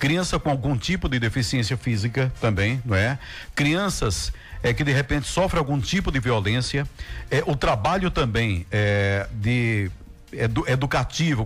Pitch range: 115-150 Hz